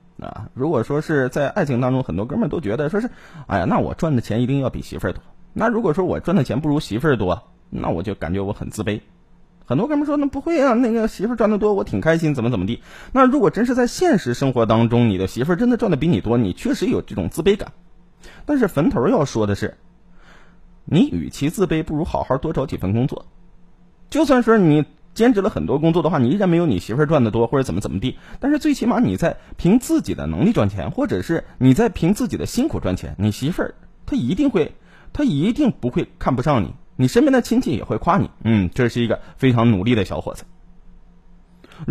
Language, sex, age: Chinese, male, 20-39